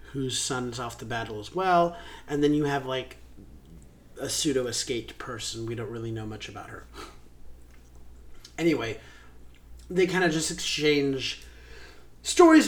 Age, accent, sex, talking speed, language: 30-49, American, male, 135 wpm, English